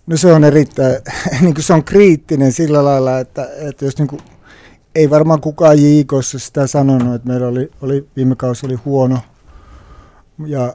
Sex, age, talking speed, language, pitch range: male, 60-79, 165 wpm, Finnish, 120-135 Hz